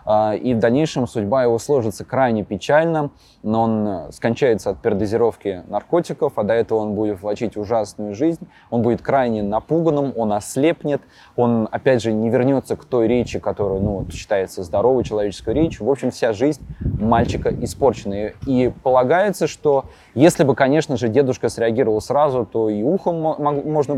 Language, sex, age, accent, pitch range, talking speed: Russian, male, 20-39, native, 105-140 Hz, 155 wpm